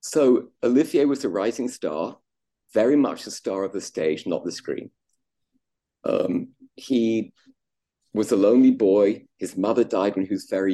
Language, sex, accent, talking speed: English, male, British, 160 wpm